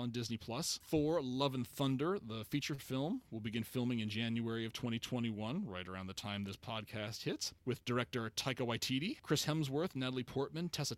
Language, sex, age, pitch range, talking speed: English, male, 30-49, 110-140 Hz, 180 wpm